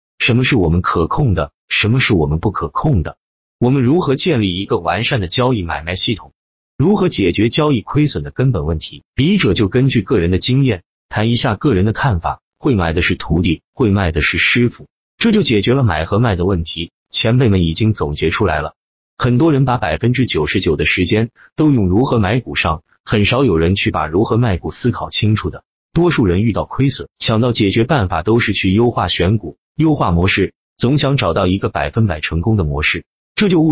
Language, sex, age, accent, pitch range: Chinese, male, 30-49, native, 90-125 Hz